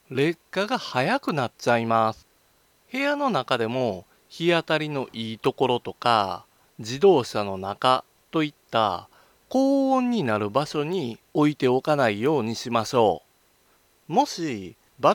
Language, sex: Japanese, male